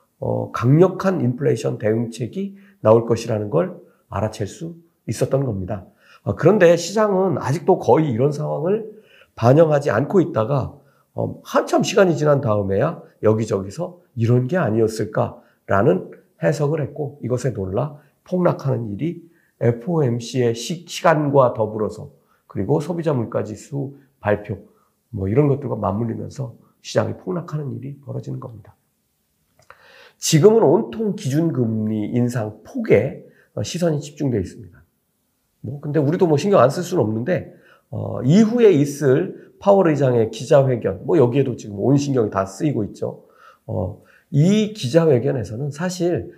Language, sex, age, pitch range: Korean, male, 50-69, 115-170 Hz